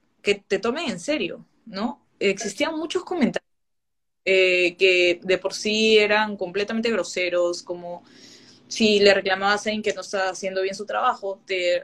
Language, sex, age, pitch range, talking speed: Spanish, female, 20-39, 185-230 Hz, 155 wpm